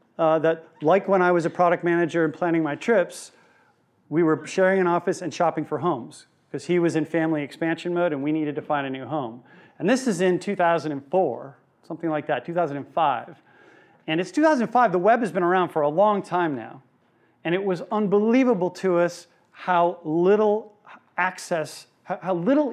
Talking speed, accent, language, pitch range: 185 wpm, American, English, 160-195 Hz